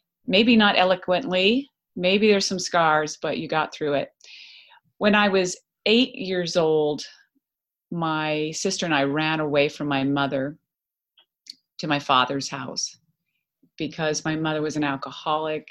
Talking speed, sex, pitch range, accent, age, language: 140 wpm, female, 150-185 Hz, American, 30-49, English